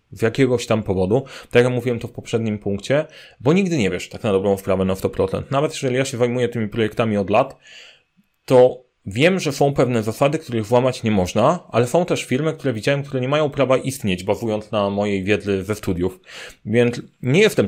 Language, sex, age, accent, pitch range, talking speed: Polish, male, 30-49, native, 110-140 Hz, 205 wpm